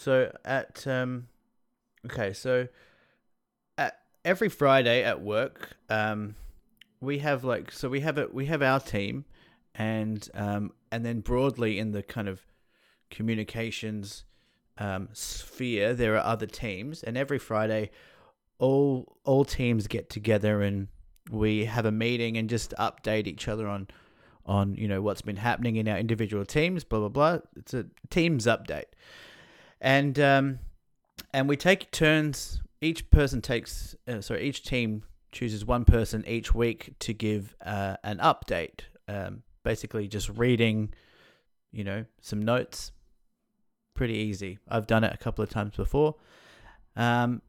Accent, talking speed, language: Australian, 145 wpm, English